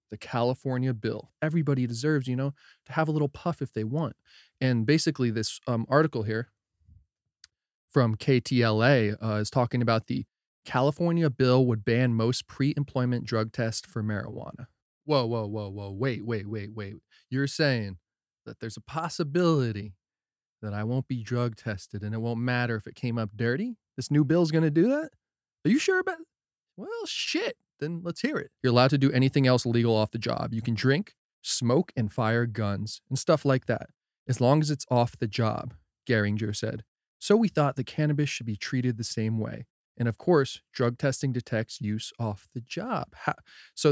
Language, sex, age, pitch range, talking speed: English, male, 20-39, 110-145 Hz, 185 wpm